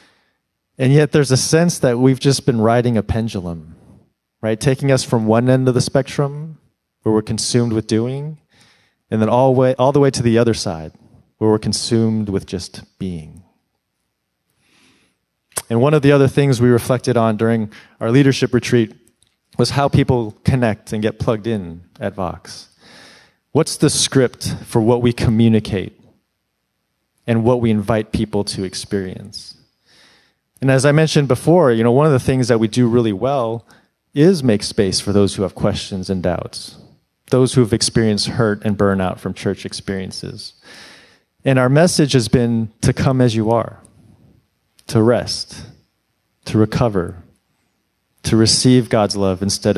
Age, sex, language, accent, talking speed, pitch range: 30-49, male, English, American, 160 wpm, 105-130 Hz